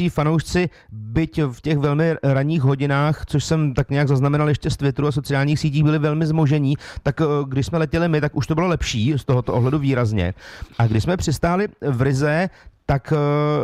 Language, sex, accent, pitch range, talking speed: Czech, male, native, 130-160 Hz, 185 wpm